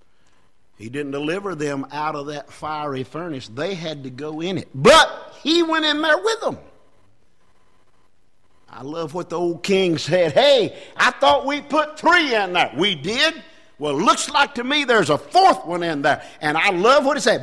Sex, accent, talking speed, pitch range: male, American, 195 wpm, 145-240 Hz